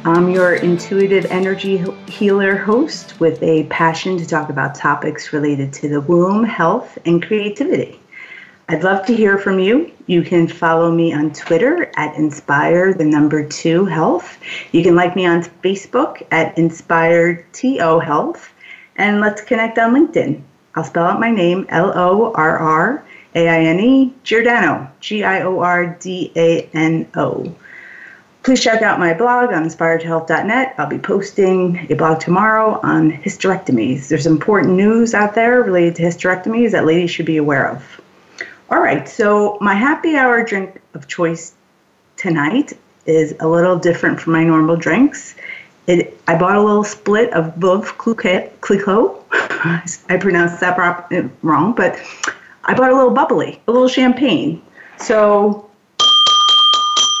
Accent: American